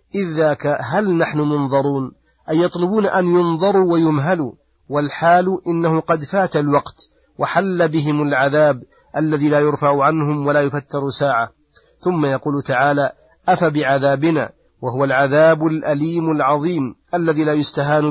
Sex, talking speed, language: male, 115 wpm, Arabic